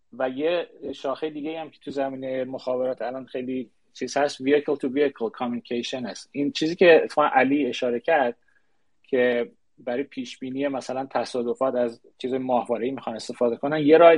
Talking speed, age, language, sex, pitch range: 165 wpm, 30-49, Persian, male, 125-150 Hz